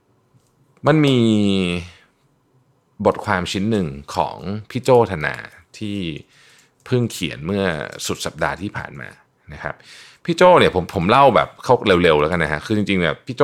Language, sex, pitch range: Thai, male, 80-115 Hz